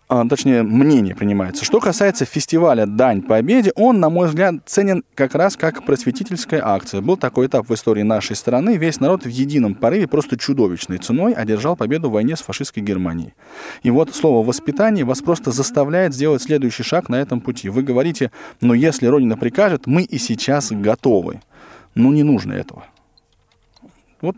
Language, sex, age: Russian, male, 20-39